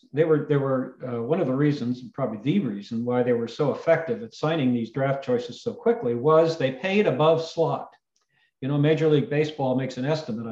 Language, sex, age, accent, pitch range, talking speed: English, male, 50-69, American, 125-160 Hz, 215 wpm